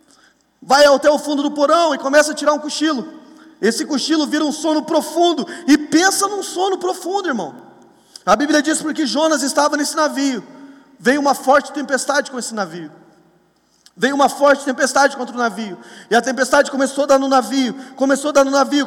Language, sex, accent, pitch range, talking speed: Portuguese, male, Brazilian, 275-315 Hz, 190 wpm